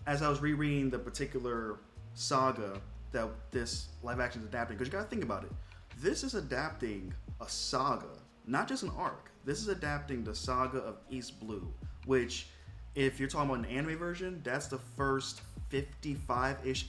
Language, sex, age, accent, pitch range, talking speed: English, male, 20-39, American, 105-140 Hz, 175 wpm